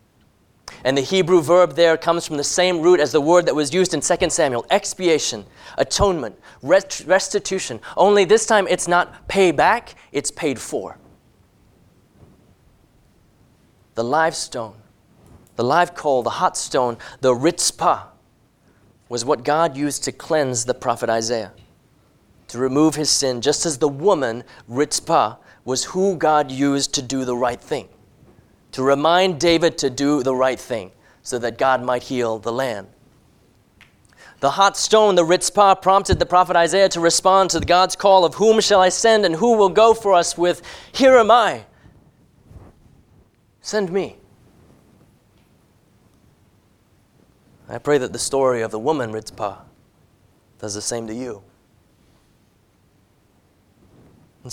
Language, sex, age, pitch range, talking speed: English, male, 30-49, 120-180 Hz, 145 wpm